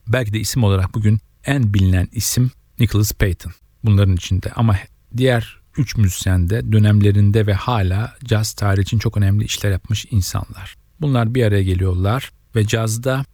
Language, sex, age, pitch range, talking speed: Turkish, male, 40-59, 100-120 Hz, 150 wpm